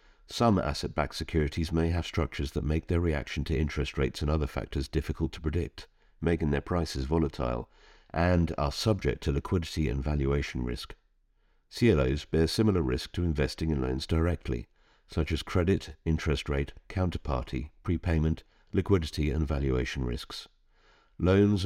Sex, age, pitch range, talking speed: male, 50-69, 70-85 Hz, 145 wpm